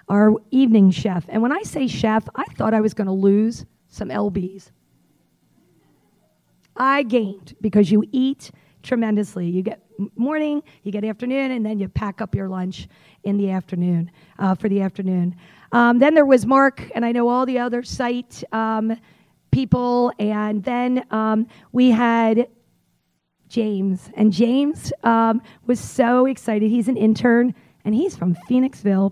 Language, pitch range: English, 200-245 Hz